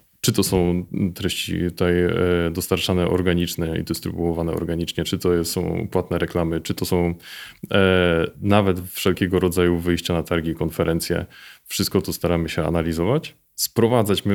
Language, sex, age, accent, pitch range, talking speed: Polish, male, 20-39, native, 85-105 Hz, 130 wpm